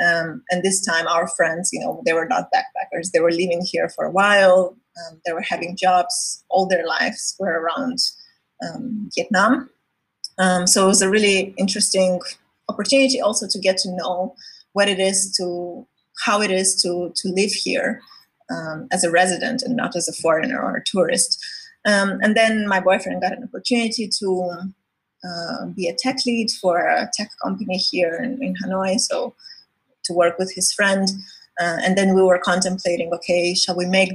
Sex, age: female, 20-39